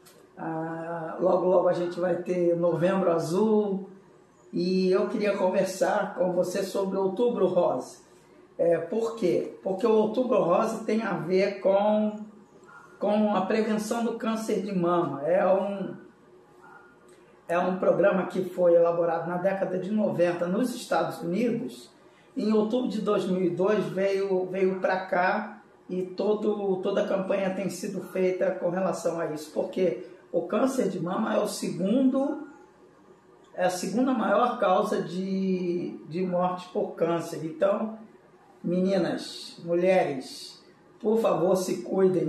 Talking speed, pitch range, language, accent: 140 wpm, 180-210 Hz, Portuguese, Brazilian